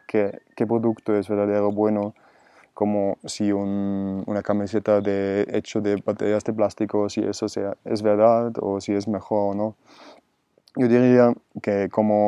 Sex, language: male, Spanish